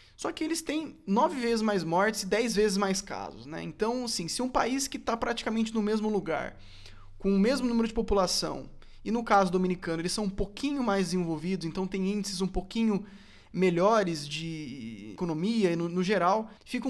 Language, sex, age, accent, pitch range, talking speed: Portuguese, male, 20-39, Brazilian, 165-210 Hz, 190 wpm